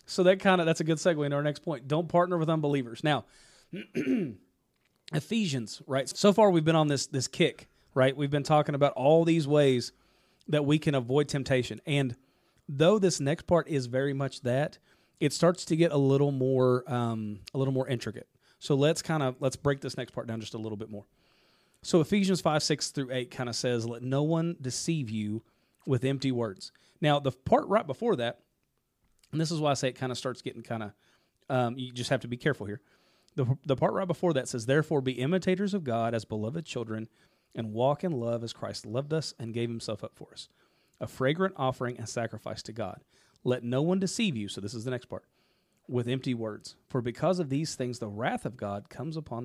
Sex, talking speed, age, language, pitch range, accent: male, 220 wpm, 30-49, English, 120-155 Hz, American